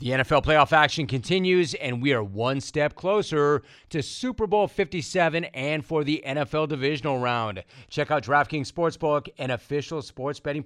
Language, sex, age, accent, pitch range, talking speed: English, male, 40-59, American, 130-160 Hz, 165 wpm